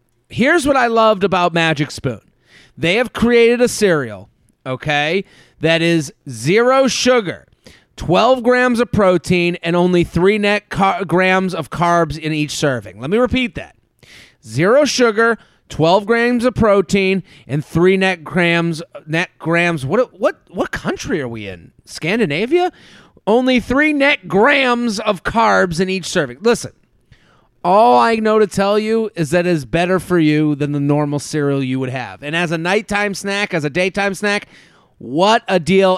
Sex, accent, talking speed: male, American, 160 wpm